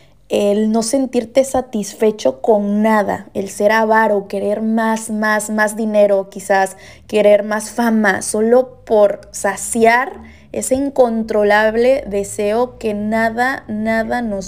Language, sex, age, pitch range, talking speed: Spanish, female, 20-39, 200-235 Hz, 115 wpm